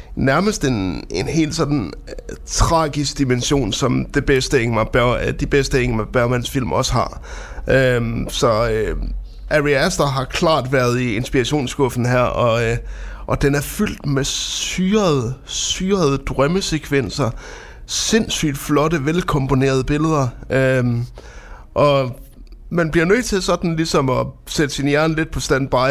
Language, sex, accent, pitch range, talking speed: Danish, male, native, 130-160 Hz, 140 wpm